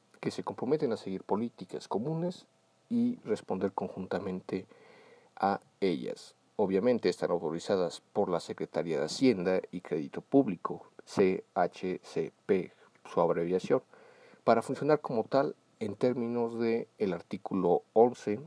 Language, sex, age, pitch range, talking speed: English, male, 40-59, 95-135 Hz, 115 wpm